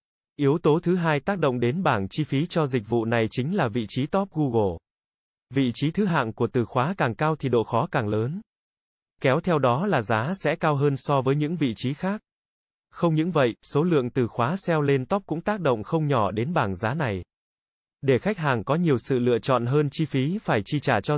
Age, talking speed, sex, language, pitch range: 20-39, 230 wpm, male, Vietnamese, 120-155 Hz